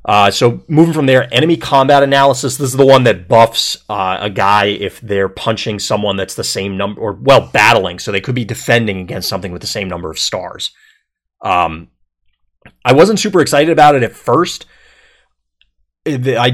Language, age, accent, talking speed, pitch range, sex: English, 30-49, American, 185 wpm, 95-130 Hz, male